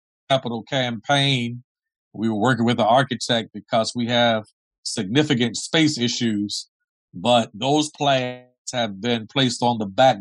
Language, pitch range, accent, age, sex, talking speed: English, 115-145 Hz, American, 50-69, male, 135 wpm